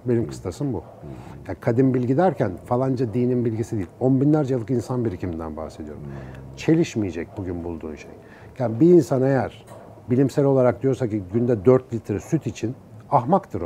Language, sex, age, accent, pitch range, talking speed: Turkish, male, 60-79, native, 110-145 Hz, 155 wpm